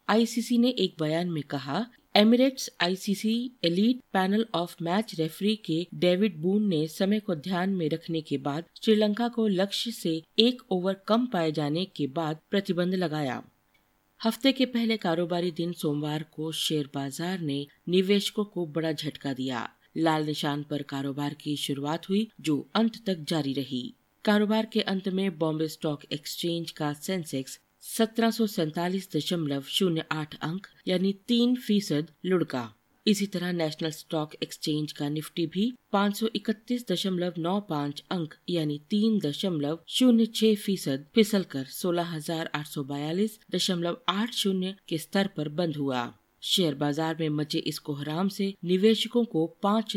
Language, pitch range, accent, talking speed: Hindi, 155-200 Hz, native, 155 wpm